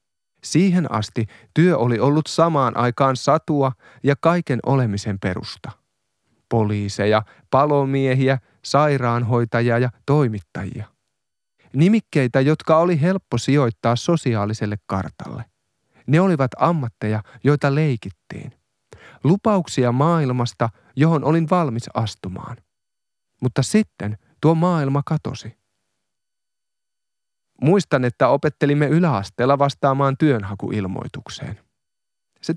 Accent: native